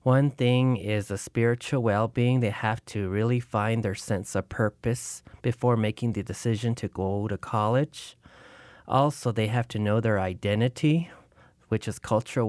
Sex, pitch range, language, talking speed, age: male, 105-120 Hz, English, 160 wpm, 30-49